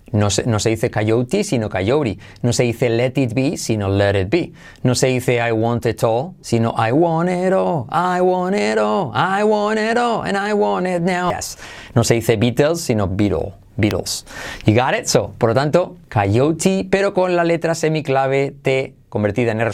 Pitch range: 115-160 Hz